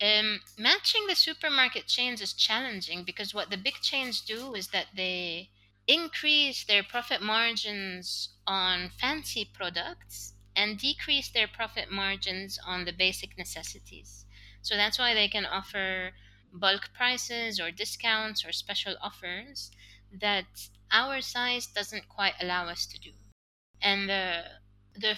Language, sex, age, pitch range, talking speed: English, female, 20-39, 175-225 Hz, 135 wpm